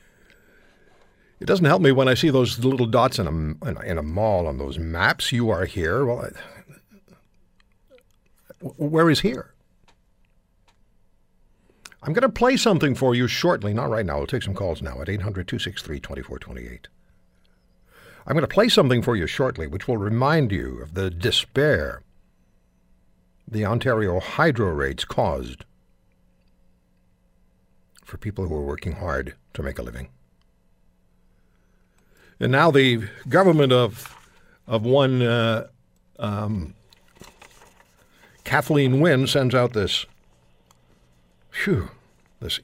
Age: 60-79